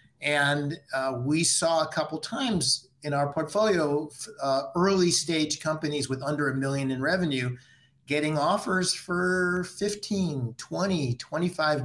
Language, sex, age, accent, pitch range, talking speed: English, male, 50-69, American, 130-170 Hz, 130 wpm